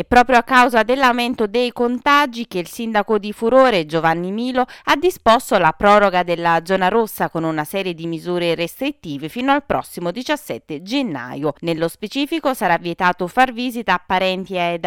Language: Italian